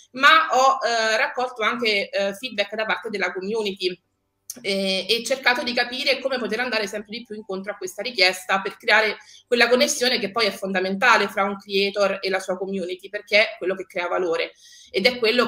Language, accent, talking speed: Italian, native, 195 wpm